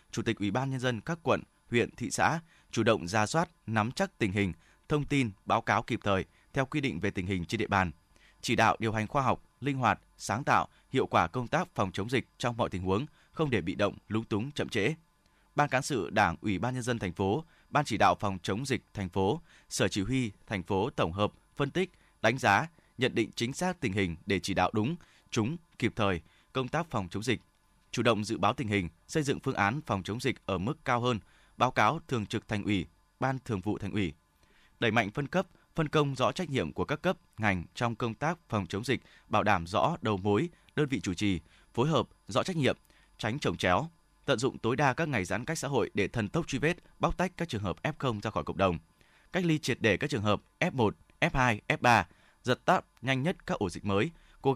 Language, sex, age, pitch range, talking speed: Vietnamese, male, 20-39, 100-140 Hz, 240 wpm